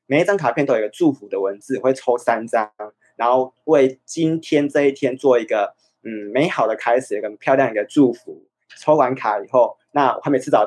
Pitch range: 130-160 Hz